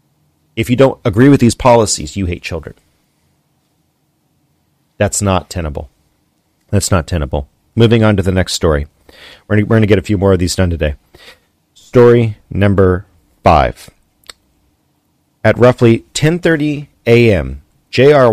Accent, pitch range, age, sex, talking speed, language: American, 85-115 Hz, 40-59, male, 135 wpm, English